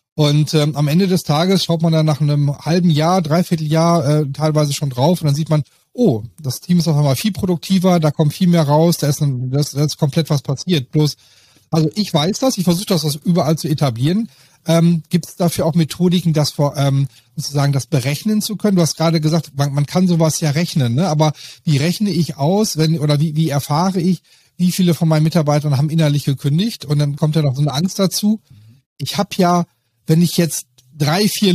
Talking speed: 220 wpm